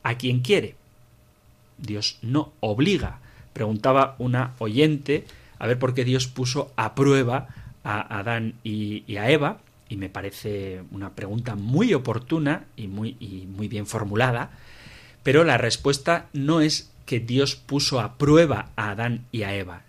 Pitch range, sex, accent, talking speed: 110-150 Hz, male, Spanish, 155 wpm